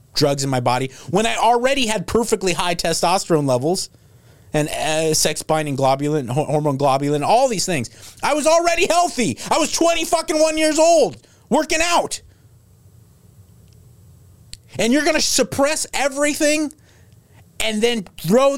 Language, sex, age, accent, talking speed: English, male, 30-49, American, 140 wpm